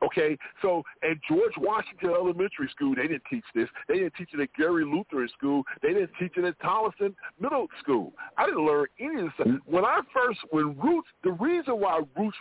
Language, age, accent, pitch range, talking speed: English, 50-69, American, 125-210 Hz, 210 wpm